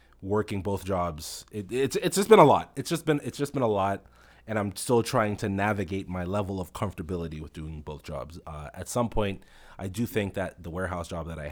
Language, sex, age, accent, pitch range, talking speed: English, male, 20-39, American, 85-115 Hz, 230 wpm